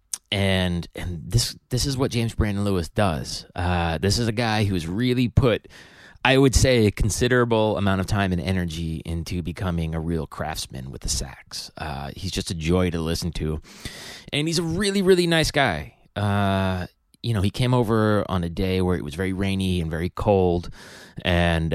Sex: male